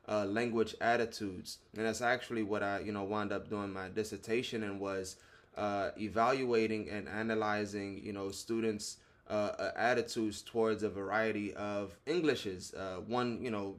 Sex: male